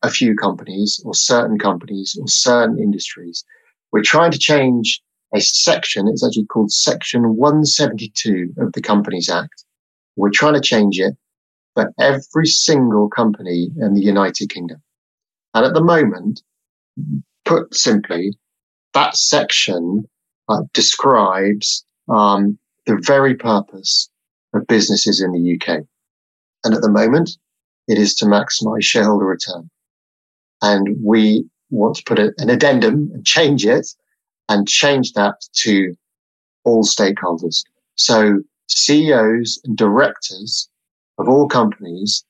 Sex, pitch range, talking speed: male, 100-120 Hz, 125 wpm